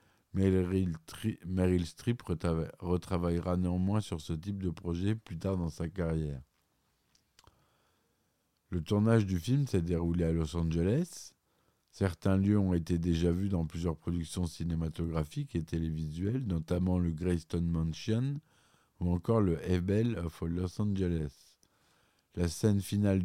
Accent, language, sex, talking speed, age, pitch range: French, French, male, 135 wpm, 50-69, 85-105 Hz